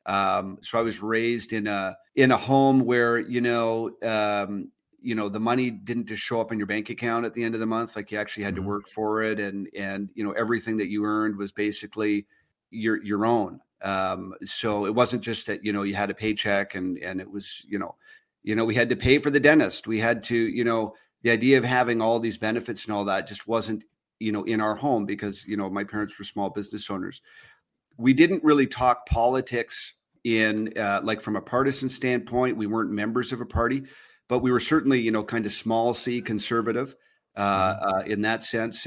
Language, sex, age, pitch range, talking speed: English, male, 40-59, 105-120 Hz, 225 wpm